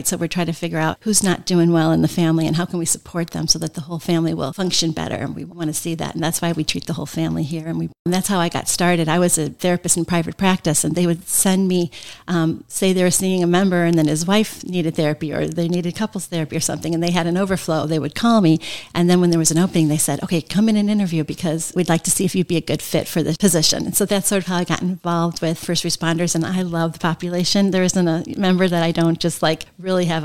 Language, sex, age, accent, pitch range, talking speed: English, female, 40-59, American, 165-185 Hz, 290 wpm